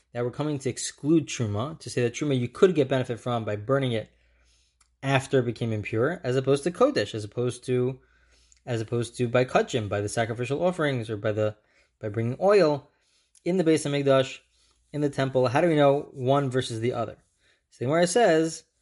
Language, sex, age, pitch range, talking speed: English, male, 20-39, 120-145 Hz, 205 wpm